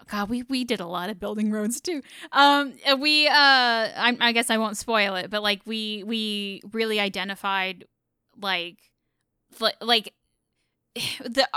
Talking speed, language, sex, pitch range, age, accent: 150 wpm, English, female, 195-240 Hz, 10-29, American